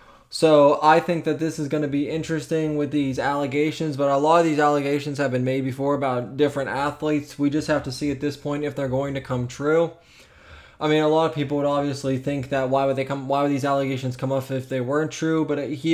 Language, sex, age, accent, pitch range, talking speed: English, male, 20-39, American, 130-145 Hz, 250 wpm